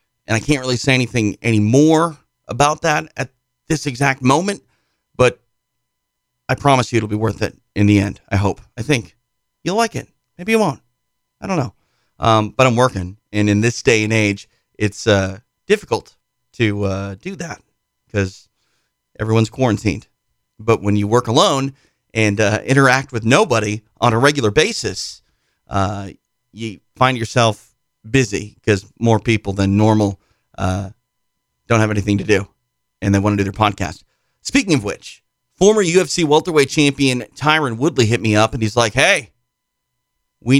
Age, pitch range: 40-59, 105-135 Hz